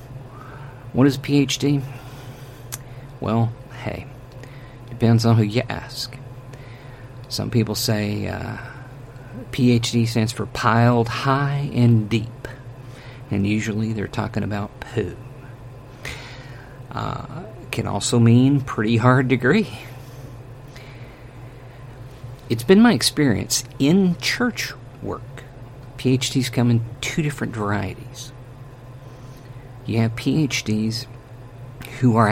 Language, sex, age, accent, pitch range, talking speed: English, male, 50-69, American, 115-130 Hz, 100 wpm